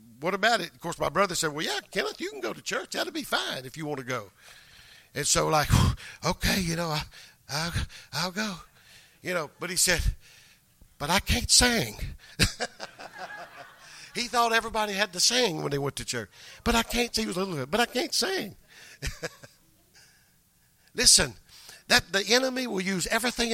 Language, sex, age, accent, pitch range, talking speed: English, male, 50-69, American, 140-205 Hz, 185 wpm